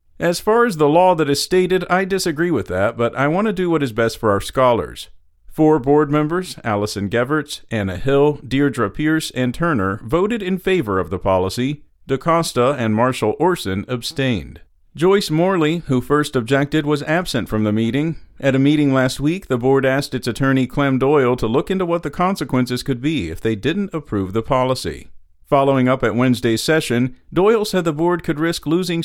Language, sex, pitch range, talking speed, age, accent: English, male, 120-160 Hz, 190 wpm, 50-69, American